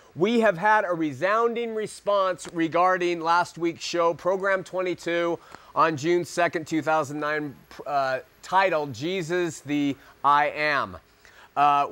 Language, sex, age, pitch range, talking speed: English, male, 30-49, 140-170 Hz, 115 wpm